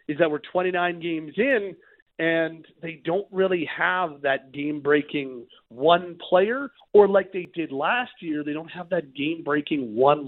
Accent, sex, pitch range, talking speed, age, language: American, male, 145-175 Hz, 160 wpm, 40-59, English